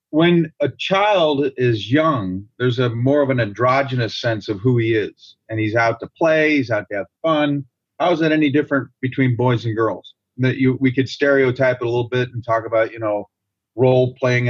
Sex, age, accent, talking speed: male, 40-59, American, 210 wpm